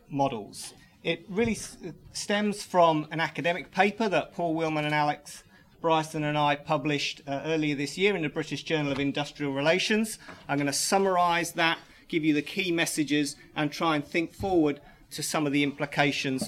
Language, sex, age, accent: English, male, 40-59, British